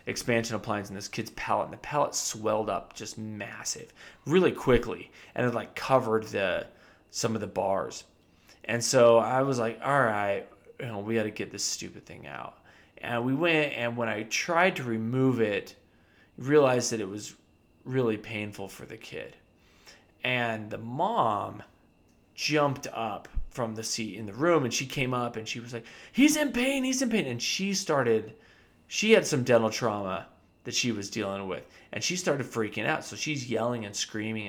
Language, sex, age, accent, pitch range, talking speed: English, male, 20-39, American, 105-130 Hz, 190 wpm